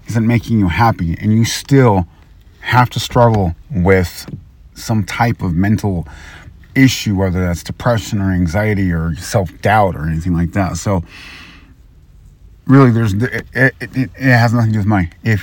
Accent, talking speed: American, 160 wpm